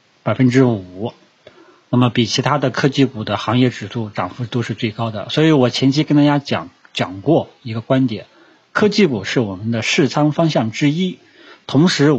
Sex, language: male, Chinese